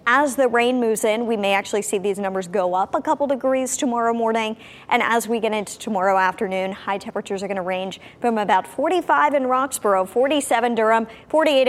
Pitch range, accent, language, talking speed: 205-260 Hz, American, English, 200 wpm